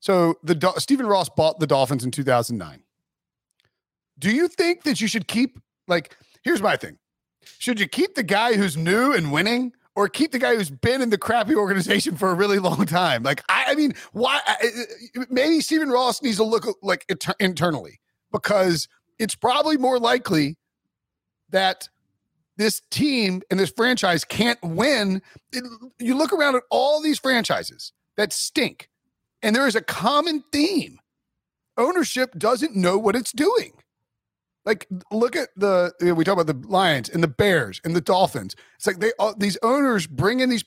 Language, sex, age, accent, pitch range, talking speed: English, male, 40-59, American, 165-240 Hz, 175 wpm